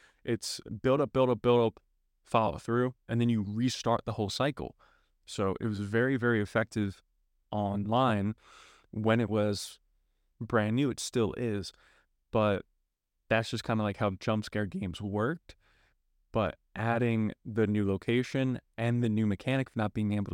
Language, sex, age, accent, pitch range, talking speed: English, male, 20-39, American, 105-130 Hz, 160 wpm